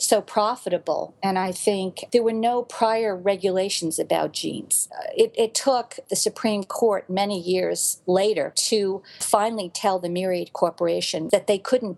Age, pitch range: 50-69, 175-225 Hz